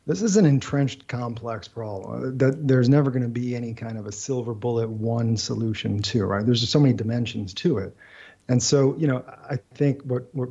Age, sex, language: 40-59, male, English